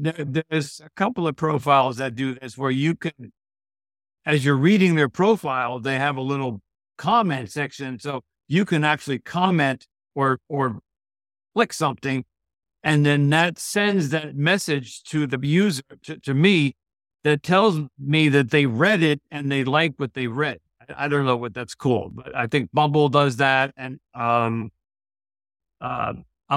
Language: English